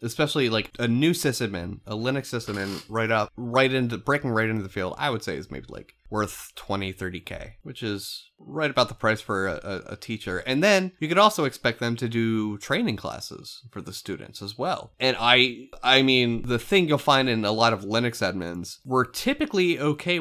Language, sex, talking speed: English, male, 210 wpm